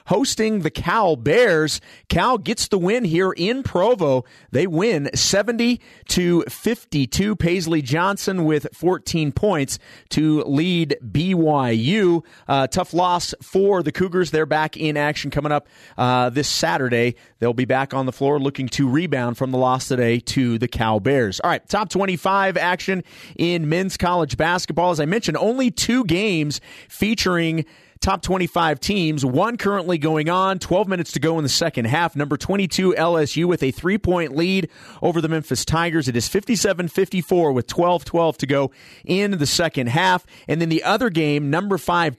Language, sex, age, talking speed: English, male, 30-49, 160 wpm